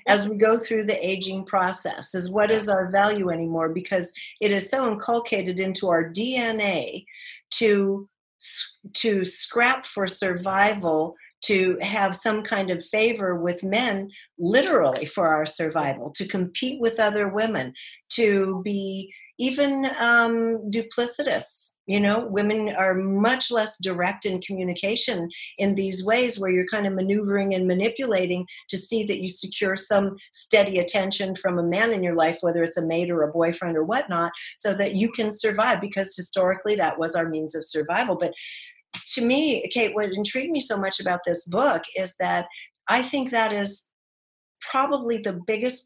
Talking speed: 160 wpm